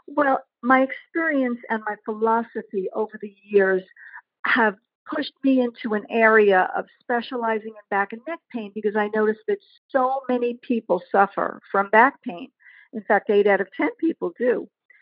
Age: 50-69